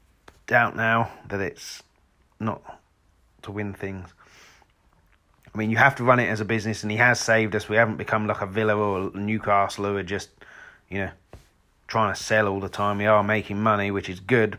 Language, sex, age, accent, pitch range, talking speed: English, male, 30-49, British, 90-110 Hz, 200 wpm